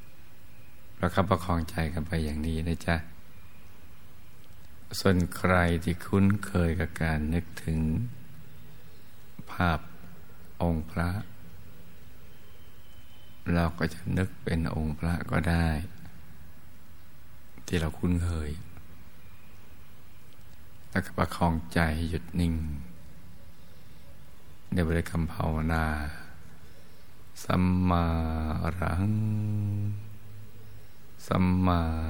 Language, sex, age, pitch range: Thai, male, 60-79, 80-90 Hz